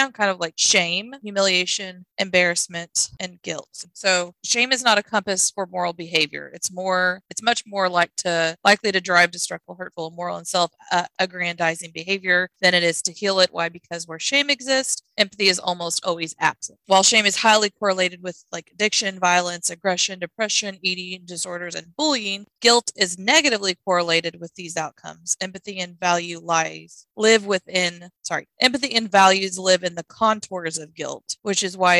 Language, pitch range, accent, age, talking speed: English, 175-205 Hz, American, 20-39, 170 wpm